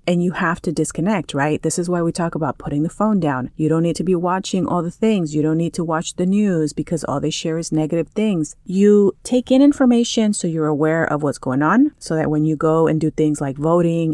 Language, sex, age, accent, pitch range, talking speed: English, female, 30-49, American, 155-175 Hz, 255 wpm